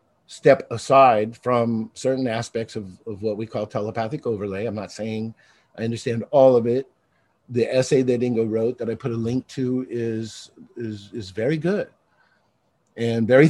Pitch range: 110-135 Hz